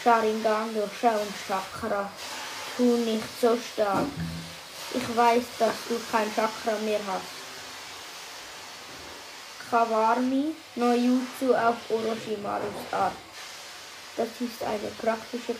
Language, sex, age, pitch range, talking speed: German, female, 20-39, 215-235 Hz, 105 wpm